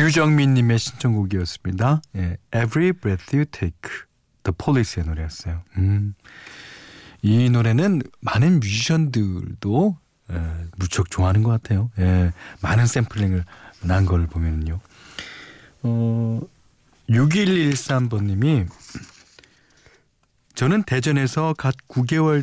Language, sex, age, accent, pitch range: Korean, male, 40-59, native, 95-135 Hz